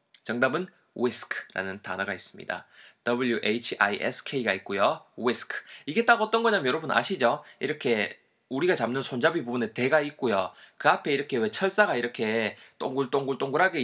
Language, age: Korean, 20-39